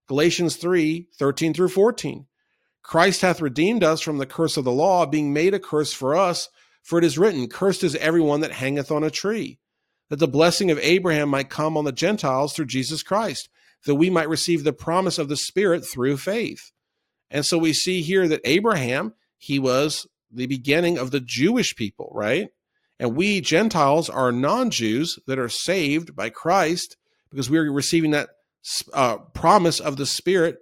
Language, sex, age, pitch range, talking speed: English, male, 50-69, 135-170 Hz, 180 wpm